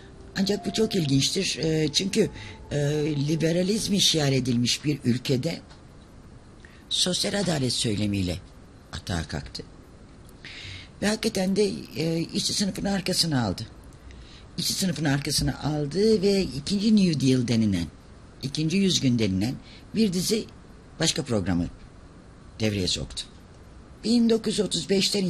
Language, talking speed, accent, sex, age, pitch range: Turkish, 105 wpm, native, female, 60-79, 105-160 Hz